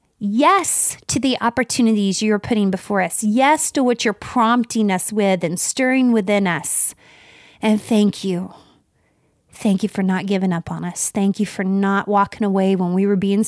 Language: English